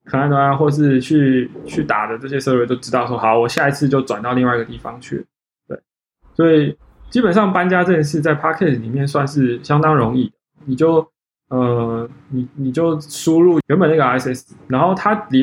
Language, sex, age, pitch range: Chinese, male, 20-39, 125-155 Hz